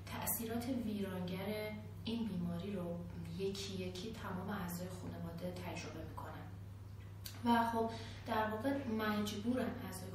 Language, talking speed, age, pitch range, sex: Persian, 105 wpm, 30-49, 90-105 Hz, female